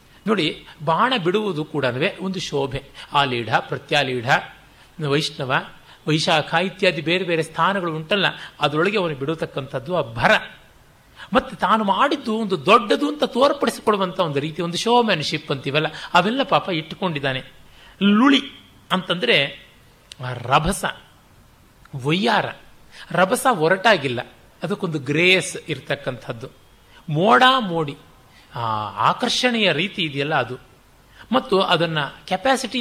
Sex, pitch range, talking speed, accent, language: male, 140-195 Hz, 100 wpm, native, Kannada